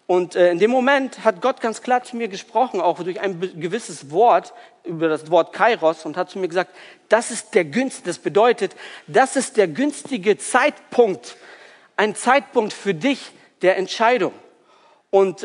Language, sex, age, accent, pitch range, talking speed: German, male, 50-69, German, 185-235 Hz, 165 wpm